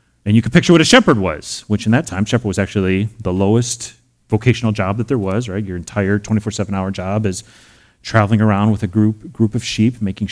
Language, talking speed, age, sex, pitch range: English, 215 wpm, 30-49, male, 95-120 Hz